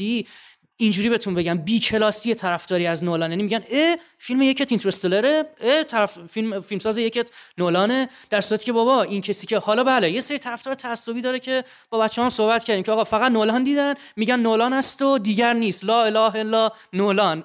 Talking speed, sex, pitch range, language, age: 180 wpm, male, 185-230 Hz, Persian, 30-49